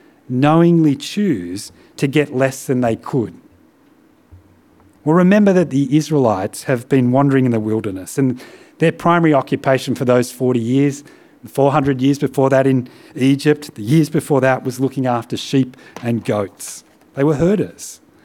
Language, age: English, 40-59